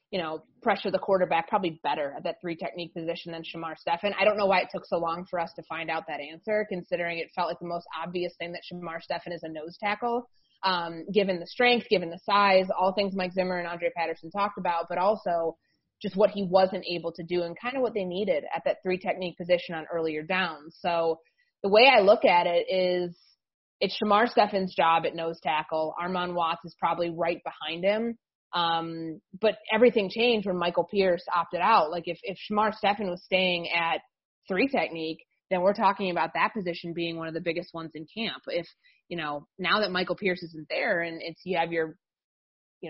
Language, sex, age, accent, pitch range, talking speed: English, female, 20-39, American, 165-195 Hz, 215 wpm